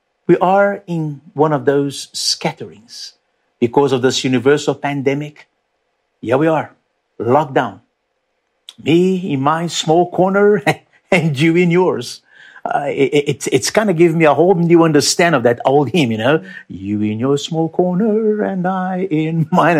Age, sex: 50-69, male